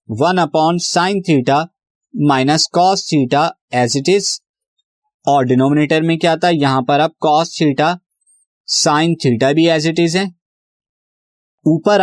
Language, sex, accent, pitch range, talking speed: Hindi, male, native, 135-175 Hz, 145 wpm